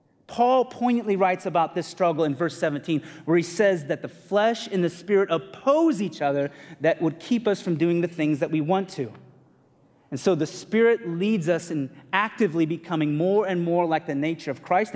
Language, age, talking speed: English, 30-49, 200 wpm